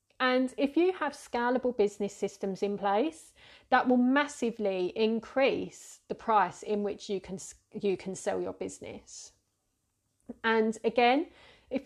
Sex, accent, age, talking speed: female, British, 30-49, 135 wpm